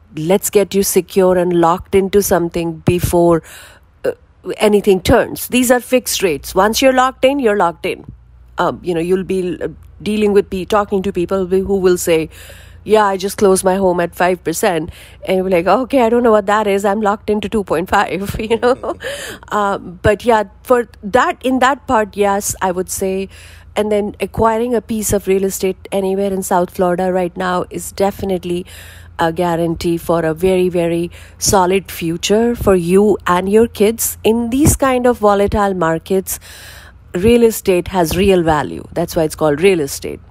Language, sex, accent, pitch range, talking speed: English, female, Indian, 170-205 Hz, 175 wpm